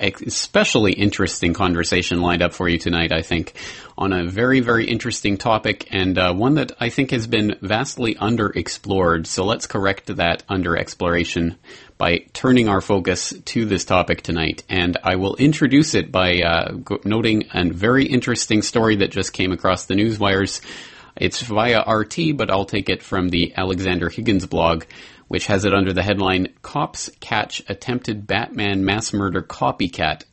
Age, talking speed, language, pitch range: 30-49, 165 wpm, English, 90-110 Hz